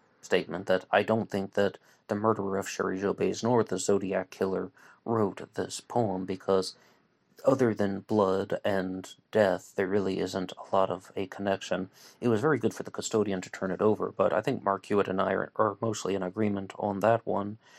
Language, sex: English, male